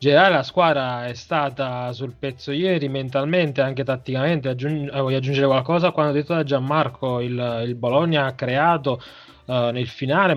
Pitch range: 120-140 Hz